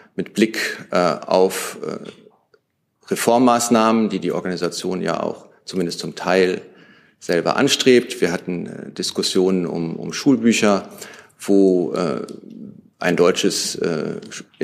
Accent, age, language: German, 40-59, German